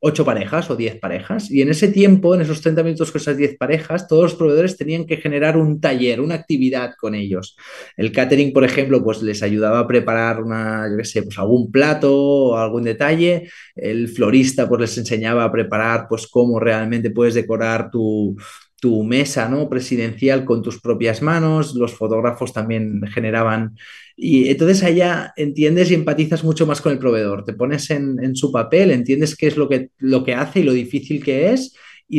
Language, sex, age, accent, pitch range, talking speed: Spanish, male, 30-49, Spanish, 115-155 Hz, 190 wpm